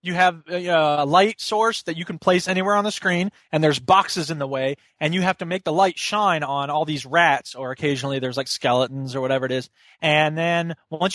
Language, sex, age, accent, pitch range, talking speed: English, male, 20-39, American, 145-195 Hz, 235 wpm